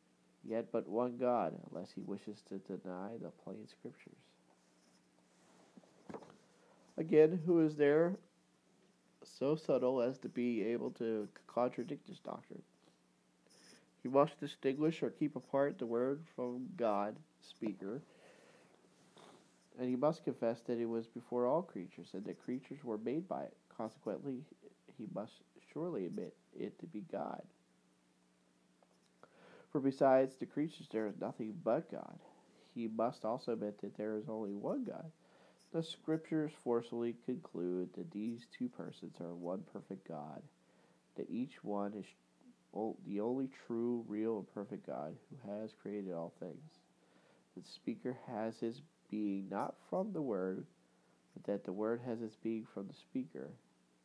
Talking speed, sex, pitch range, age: 145 wpm, male, 90-125 Hz, 40-59